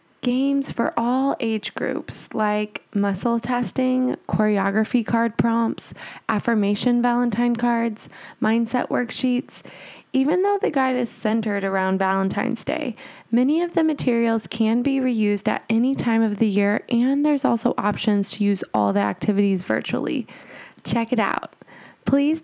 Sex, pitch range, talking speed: female, 210-255 Hz, 140 wpm